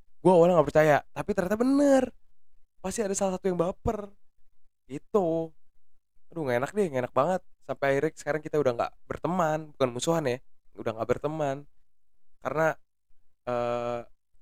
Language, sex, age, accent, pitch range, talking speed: Indonesian, male, 20-39, native, 120-165 Hz, 150 wpm